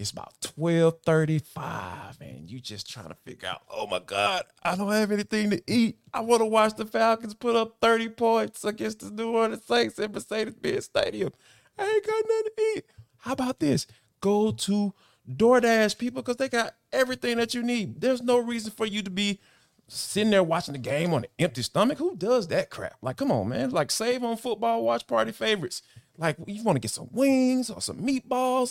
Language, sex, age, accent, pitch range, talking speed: English, male, 20-39, American, 145-240 Hz, 205 wpm